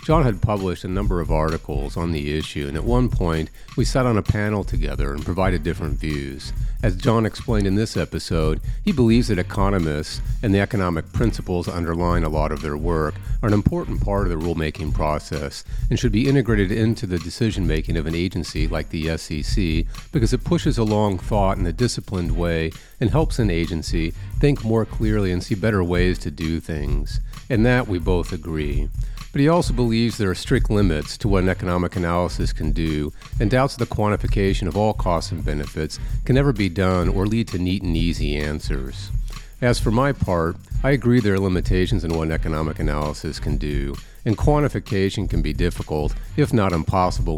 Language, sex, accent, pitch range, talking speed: English, male, American, 80-115 Hz, 195 wpm